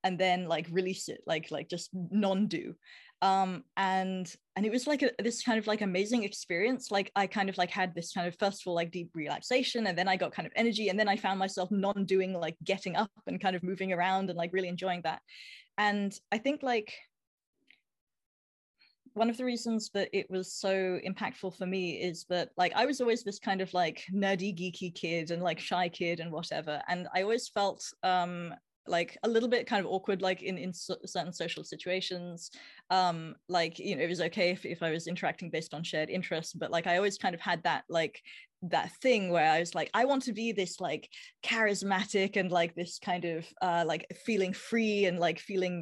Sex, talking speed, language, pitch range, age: female, 215 wpm, English, 175-205 Hz, 20-39